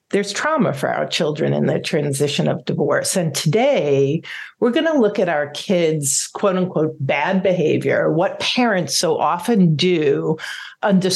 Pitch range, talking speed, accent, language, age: 155-205 Hz, 155 wpm, American, English, 50-69